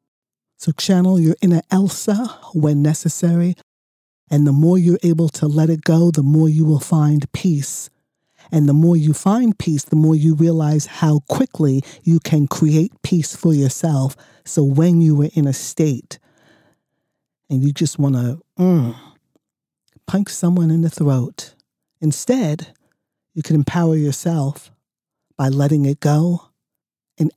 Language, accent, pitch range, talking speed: English, American, 145-170 Hz, 145 wpm